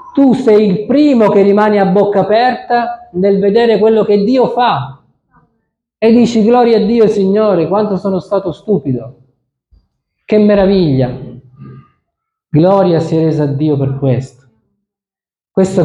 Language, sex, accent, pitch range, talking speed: Italian, male, native, 135-190 Hz, 135 wpm